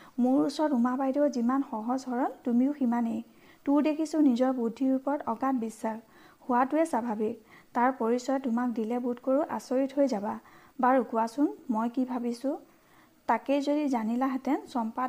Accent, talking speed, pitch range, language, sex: native, 105 wpm, 240-275 Hz, Hindi, female